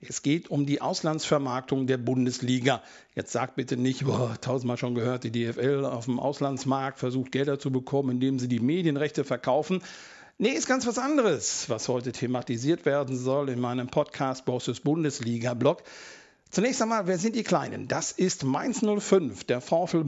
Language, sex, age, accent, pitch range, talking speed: German, male, 50-69, German, 130-175 Hz, 160 wpm